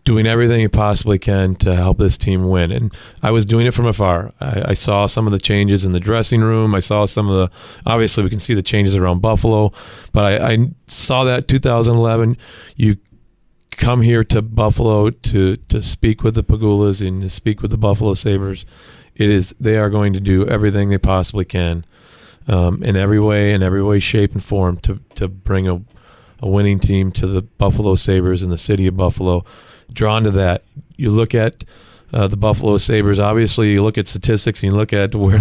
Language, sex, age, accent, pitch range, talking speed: English, male, 30-49, American, 95-110 Hz, 210 wpm